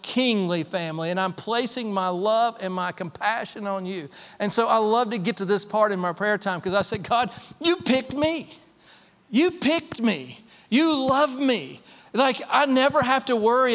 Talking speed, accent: 190 wpm, American